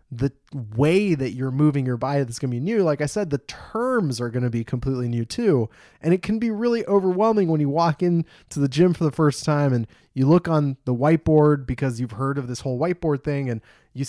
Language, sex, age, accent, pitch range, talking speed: English, male, 20-39, American, 125-155 Hz, 240 wpm